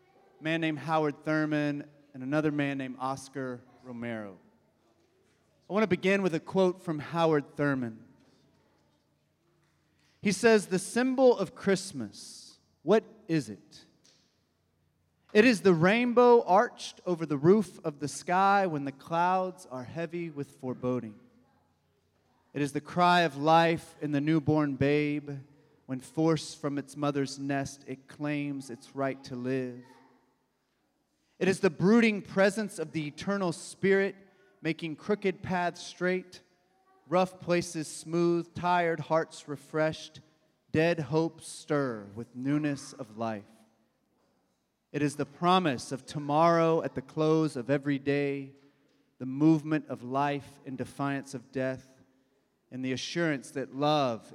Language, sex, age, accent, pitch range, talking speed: English, male, 30-49, American, 130-170 Hz, 135 wpm